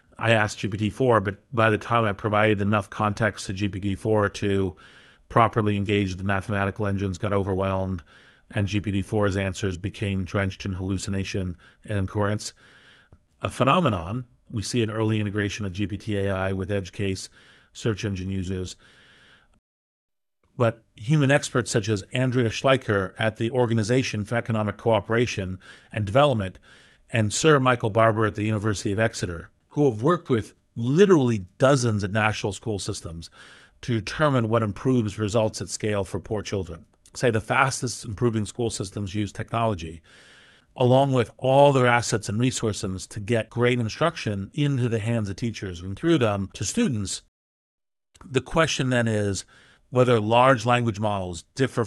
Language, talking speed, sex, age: English, 145 wpm, male, 50-69